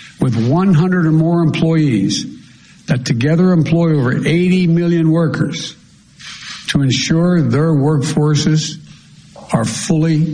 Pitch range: 145-170 Hz